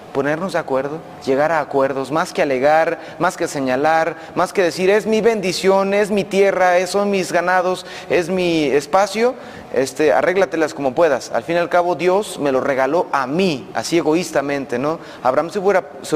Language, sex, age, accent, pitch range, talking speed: Spanish, male, 30-49, Mexican, 145-190 Hz, 180 wpm